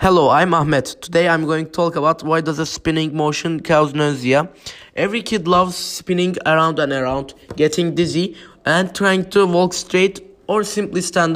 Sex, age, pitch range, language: male, 20-39, 150-180 Hz, English